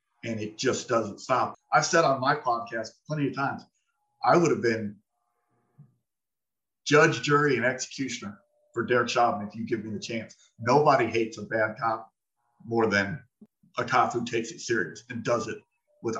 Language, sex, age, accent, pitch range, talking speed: English, male, 50-69, American, 115-135 Hz, 175 wpm